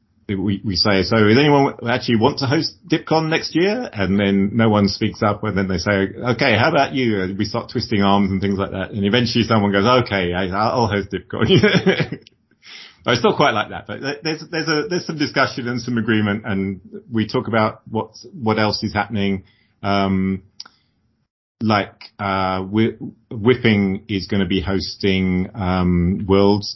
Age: 30-49